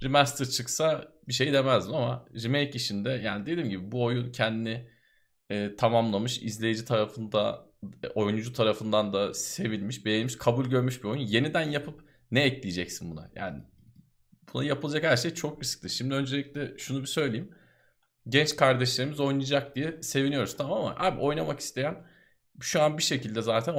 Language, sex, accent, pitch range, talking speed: Turkish, male, native, 115-145 Hz, 145 wpm